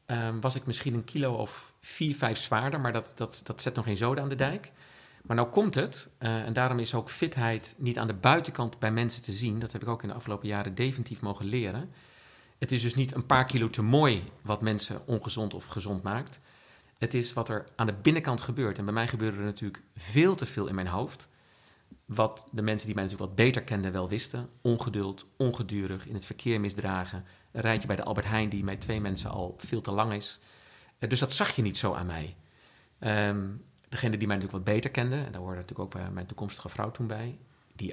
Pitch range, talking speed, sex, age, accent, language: 100-125 Hz, 225 wpm, male, 50-69, Dutch, Dutch